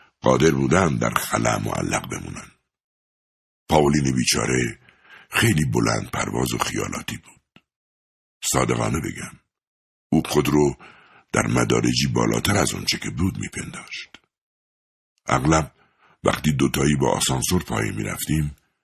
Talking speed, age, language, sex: 115 wpm, 60-79, Persian, male